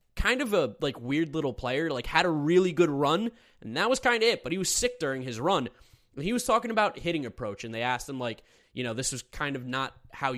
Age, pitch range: 20-39, 130-190 Hz